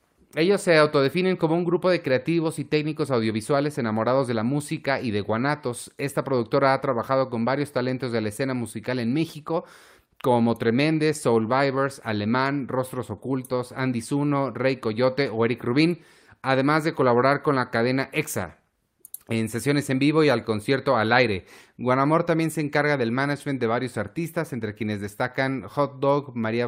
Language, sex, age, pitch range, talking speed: Spanish, male, 30-49, 115-145 Hz, 170 wpm